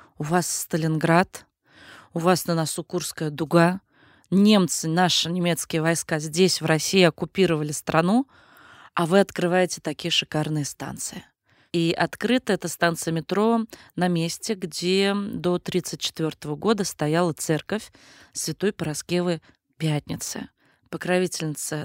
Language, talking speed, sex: Russian, 110 wpm, female